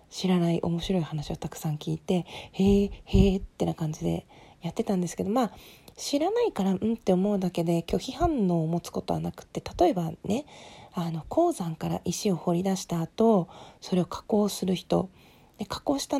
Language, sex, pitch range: Japanese, female, 175-245 Hz